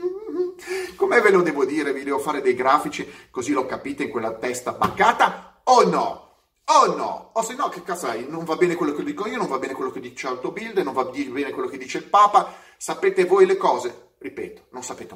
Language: Italian